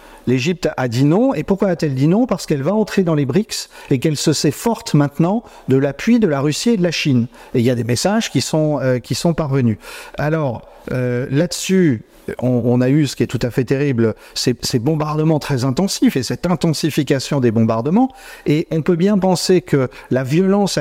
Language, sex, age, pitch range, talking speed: French, male, 50-69, 130-180 Hz, 215 wpm